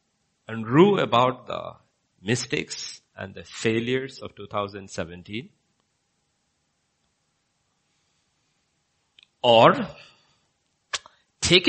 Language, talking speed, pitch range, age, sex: English, 60 wpm, 110-145 Hz, 50-69, male